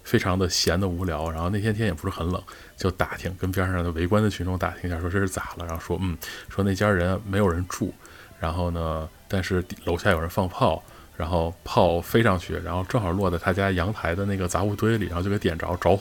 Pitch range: 95-125 Hz